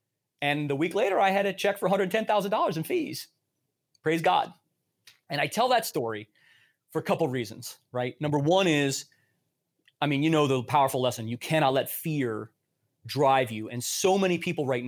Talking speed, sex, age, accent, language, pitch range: 185 wpm, male, 30-49, American, English, 130-165 Hz